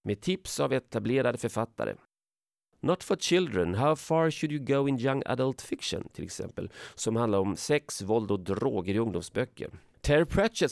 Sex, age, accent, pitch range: male, 40-59, native, 100-140 Hz